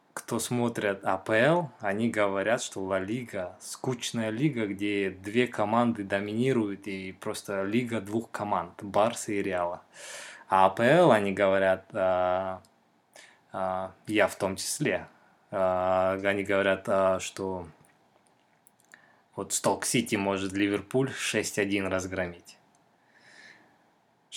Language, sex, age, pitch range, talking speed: Russian, male, 20-39, 95-115 Hz, 105 wpm